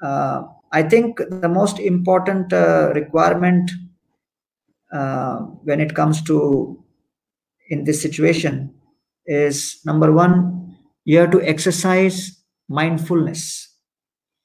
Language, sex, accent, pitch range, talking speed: Hindi, male, native, 155-180 Hz, 100 wpm